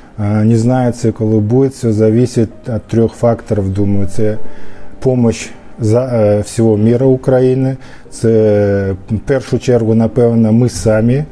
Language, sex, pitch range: Ukrainian, male, 105-120 Hz